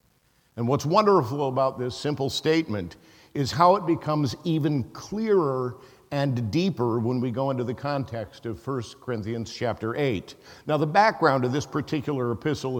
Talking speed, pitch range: 155 wpm, 120-150 Hz